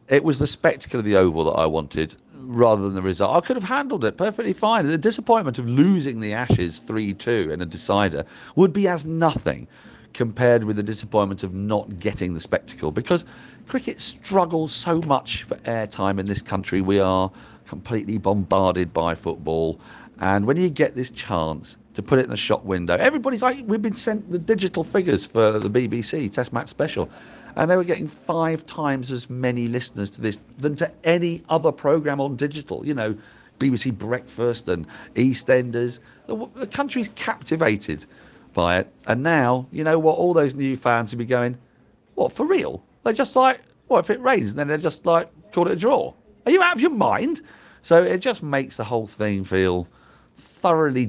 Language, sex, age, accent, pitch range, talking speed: English, male, 50-69, British, 105-170 Hz, 190 wpm